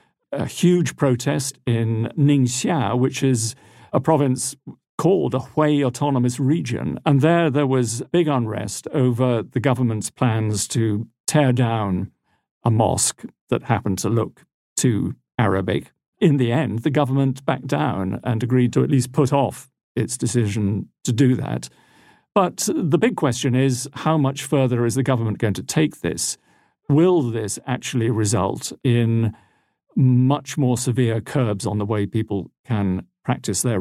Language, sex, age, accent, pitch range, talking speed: English, male, 50-69, British, 115-140 Hz, 150 wpm